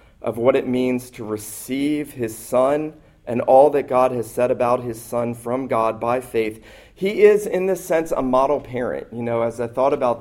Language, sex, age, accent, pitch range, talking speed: English, male, 40-59, American, 115-135 Hz, 205 wpm